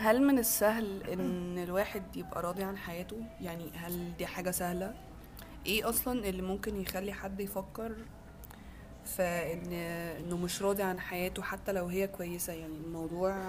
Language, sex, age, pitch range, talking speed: Arabic, female, 20-39, 180-205 Hz, 145 wpm